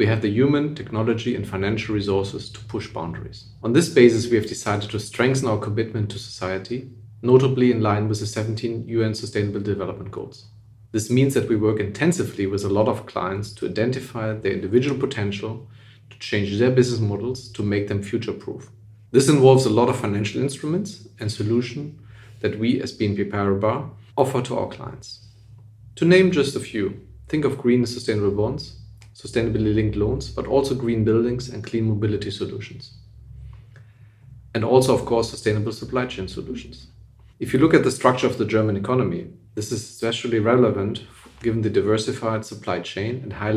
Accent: German